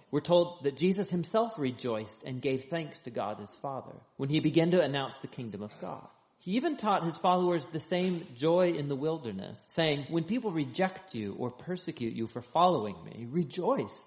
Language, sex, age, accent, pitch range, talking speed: English, male, 40-59, American, 130-180 Hz, 190 wpm